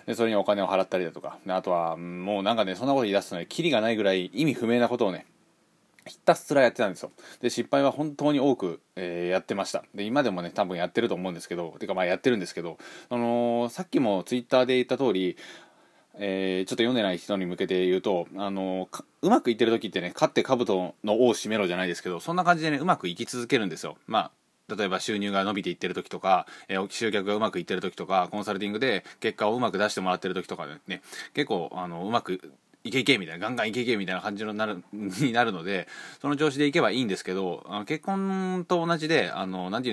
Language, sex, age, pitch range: Japanese, male, 20-39, 95-130 Hz